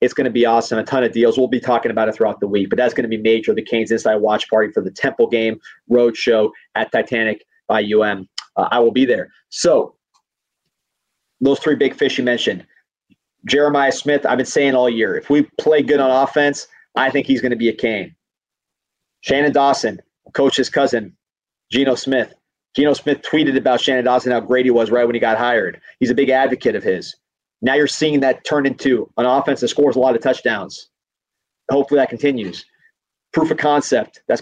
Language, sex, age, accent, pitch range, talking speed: English, male, 30-49, American, 115-145 Hz, 205 wpm